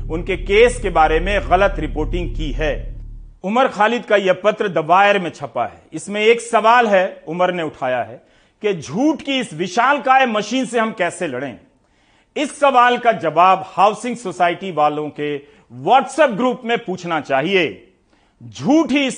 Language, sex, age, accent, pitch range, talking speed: Hindi, male, 40-59, native, 155-225 Hz, 165 wpm